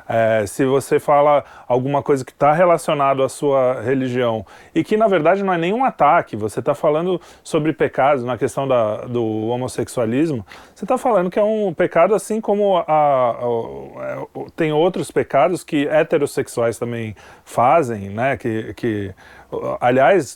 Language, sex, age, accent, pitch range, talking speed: Portuguese, male, 20-39, Brazilian, 120-165 Hz, 160 wpm